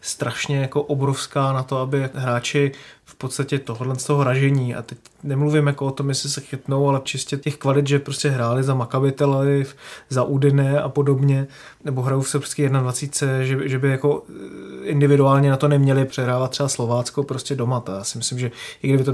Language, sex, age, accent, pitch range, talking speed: Czech, male, 20-39, native, 130-145 Hz, 190 wpm